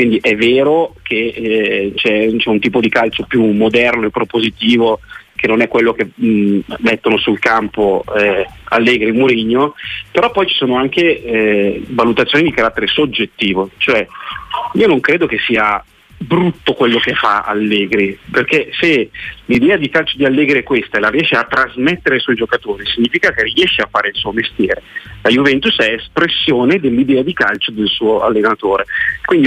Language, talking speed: Italian, 170 wpm